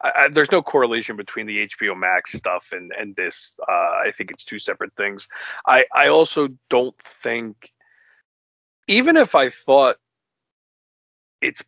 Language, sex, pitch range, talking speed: English, male, 110-155 Hz, 145 wpm